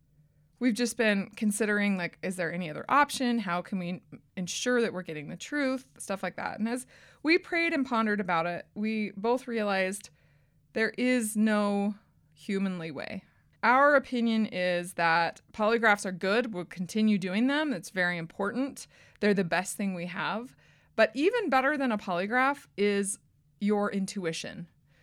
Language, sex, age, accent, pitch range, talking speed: English, female, 20-39, American, 180-230 Hz, 160 wpm